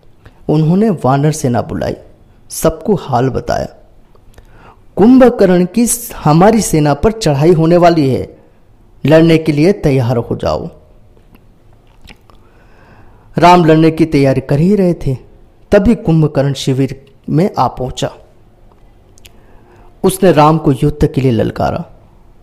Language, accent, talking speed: Hindi, native, 115 wpm